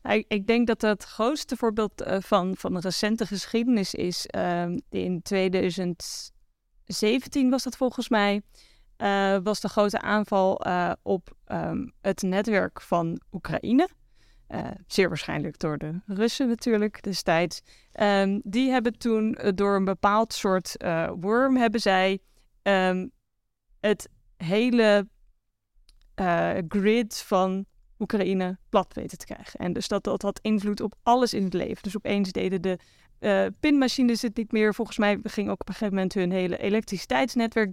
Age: 20-39